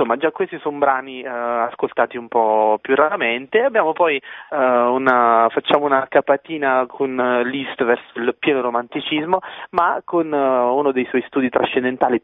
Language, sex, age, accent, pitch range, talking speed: Italian, male, 30-49, native, 120-145 Hz, 160 wpm